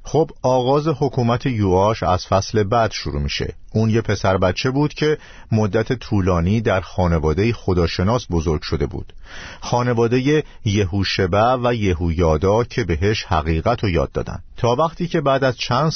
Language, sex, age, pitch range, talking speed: Persian, male, 50-69, 85-125 Hz, 145 wpm